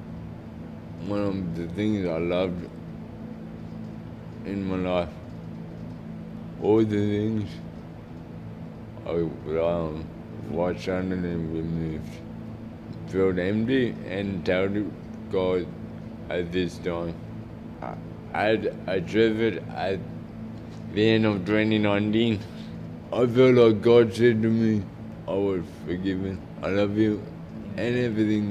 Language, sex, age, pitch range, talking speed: English, male, 20-39, 85-110 Hz, 105 wpm